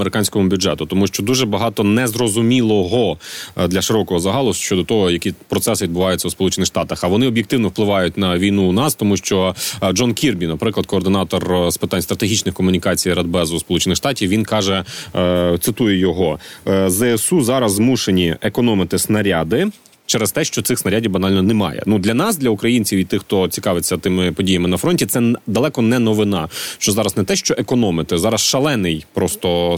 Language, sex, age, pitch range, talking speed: Ukrainian, male, 30-49, 90-115 Hz, 165 wpm